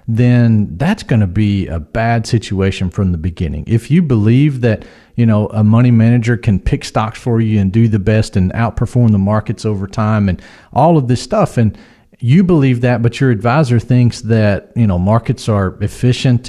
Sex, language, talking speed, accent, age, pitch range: male, English, 195 wpm, American, 40-59, 105-130 Hz